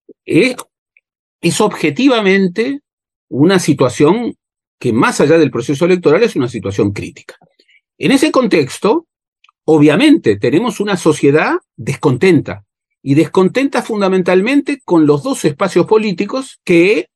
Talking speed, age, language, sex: 110 wpm, 40-59, Spanish, male